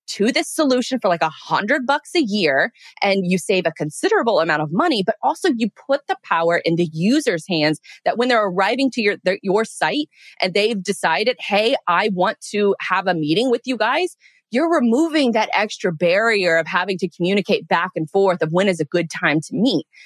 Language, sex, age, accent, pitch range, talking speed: English, female, 20-39, American, 175-240 Hz, 205 wpm